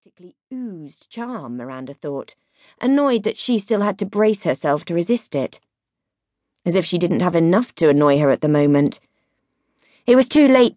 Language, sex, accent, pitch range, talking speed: English, female, British, 170-250 Hz, 175 wpm